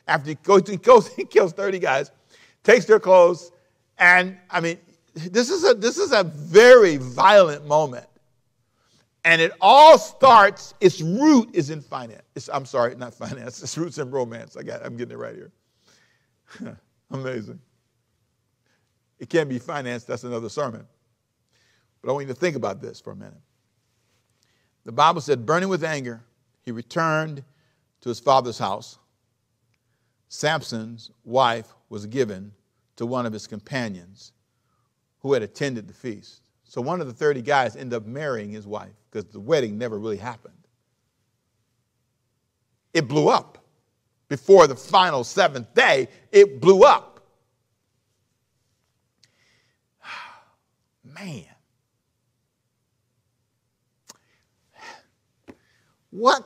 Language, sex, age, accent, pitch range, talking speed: English, male, 50-69, American, 115-155 Hz, 130 wpm